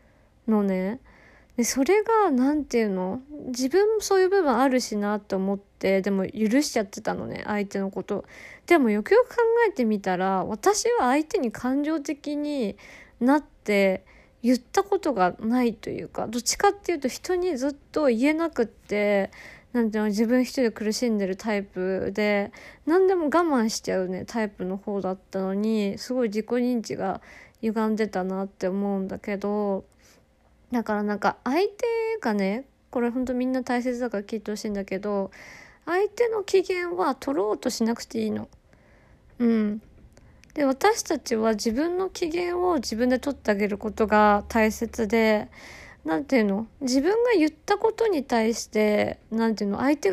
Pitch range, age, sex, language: 210-295 Hz, 20-39, female, Japanese